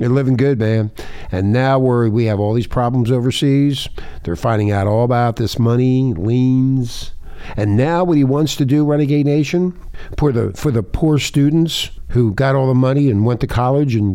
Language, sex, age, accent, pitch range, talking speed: English, male, 60-79, American, 100-145 Hz, 200 wpm